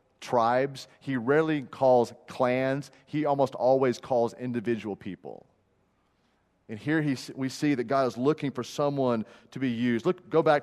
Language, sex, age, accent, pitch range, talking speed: English, male, 30-49, American, 115-145 Hz, 150 wpm